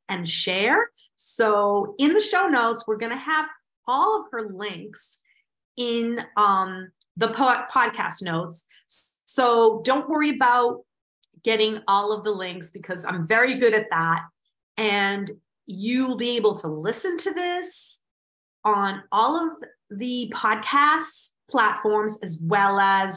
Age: 30-49